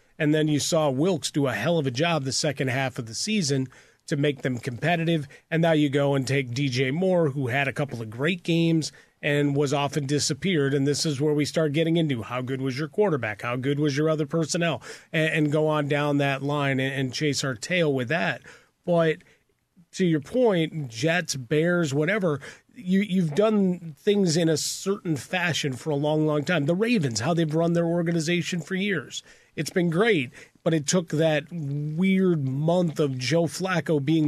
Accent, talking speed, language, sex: American, 200 wpm, English, male